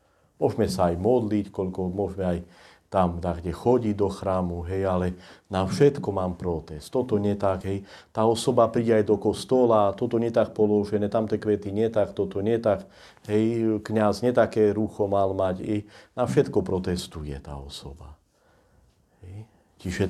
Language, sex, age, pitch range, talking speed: Slovak, male, 40-59, 90-115 Hz, 160 wpm